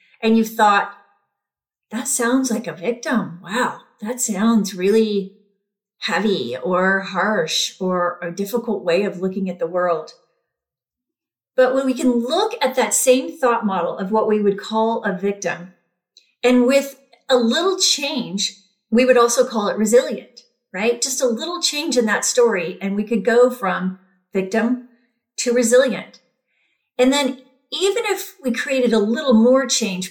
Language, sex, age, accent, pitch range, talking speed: English, female, 40-59, American, 195-250 Hz, 155 wpm